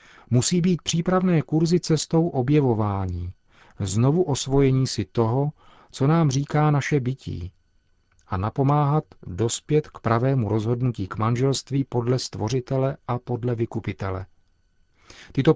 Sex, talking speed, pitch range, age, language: male, 110 wpm, 110-140 Hz, 40-59, Czech